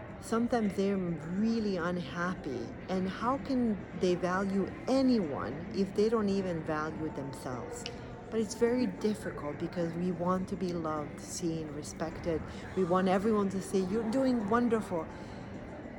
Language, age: English, 40-59